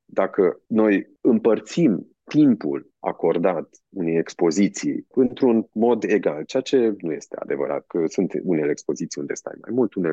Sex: male